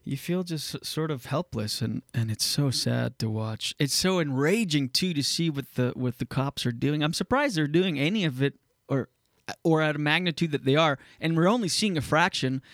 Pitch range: 130-165 Hz